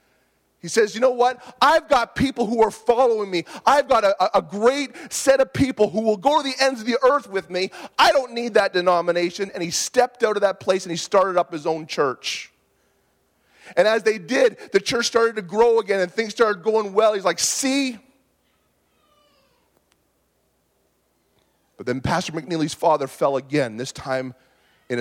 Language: English